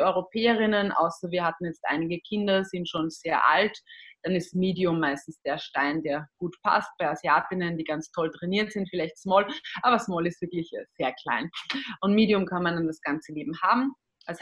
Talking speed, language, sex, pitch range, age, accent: 185 wpm, German, female, 170-210 Hz, 20-39, German